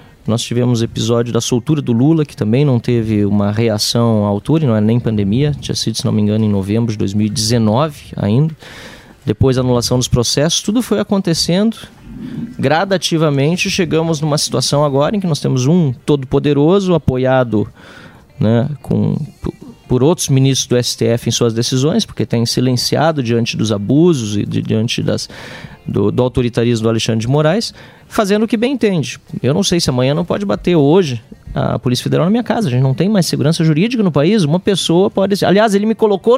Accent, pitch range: Brazilian, 120-180 Hz